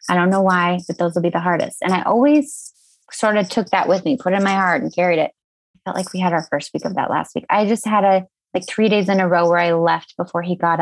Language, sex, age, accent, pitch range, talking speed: English, female, 20-39, American, 175-200 Hz, 305 wpm